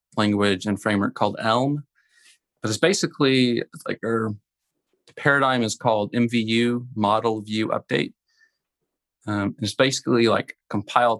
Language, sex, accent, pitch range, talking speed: English, male, American, 105-125 Hz, 130 wpm